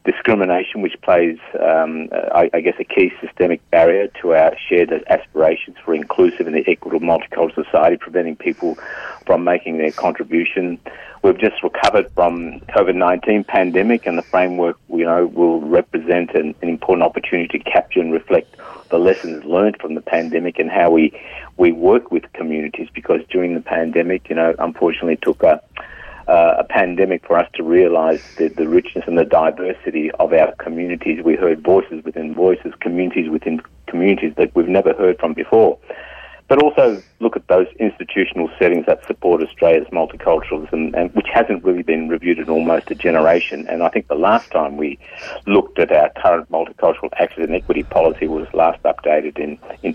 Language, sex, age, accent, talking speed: English, male, 50-69, Australian, 170 wpm